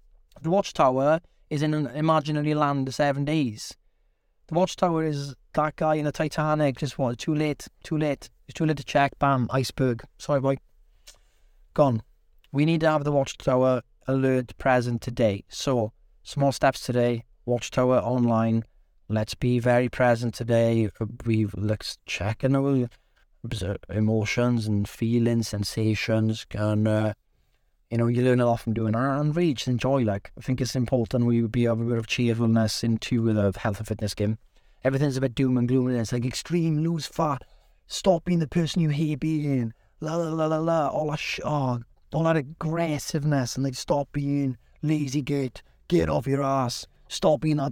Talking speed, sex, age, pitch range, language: 175 wpm, male, 30-49, 115-150 Hz, English